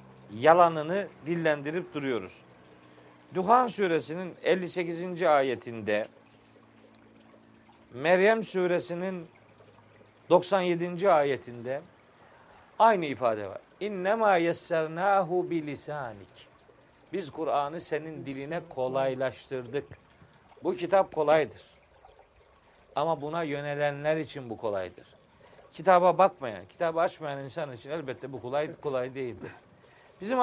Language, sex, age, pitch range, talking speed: Turkish, male, 50-69, 140-185 Hz, 80 wpm